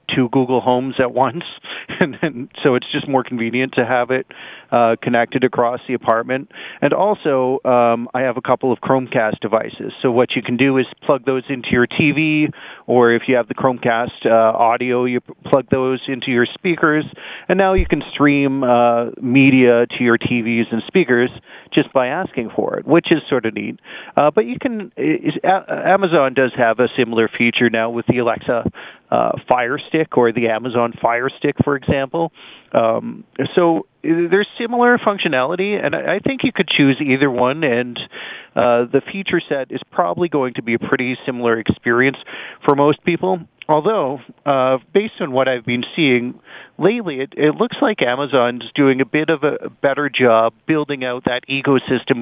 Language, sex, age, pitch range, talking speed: English, male, 40-59, 120-150 Hz, 185 wpm